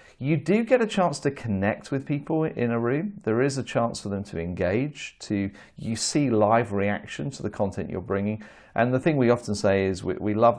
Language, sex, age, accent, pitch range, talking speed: English, male, 40-59, British, 100-120 Hz, 225 wpm